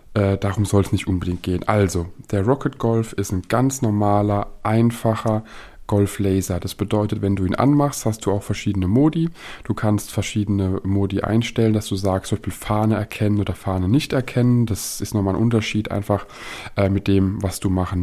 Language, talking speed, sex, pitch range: German, 180 wpm, male, 100-115 Hz